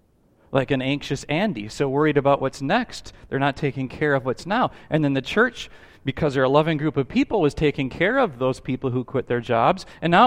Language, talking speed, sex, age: English, 230 wpm, male, 40-59